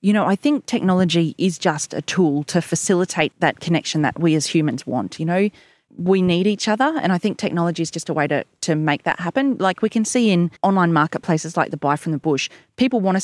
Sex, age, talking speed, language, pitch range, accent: female, 30-49, 240 wpm, English, 155-195 Hz, Australian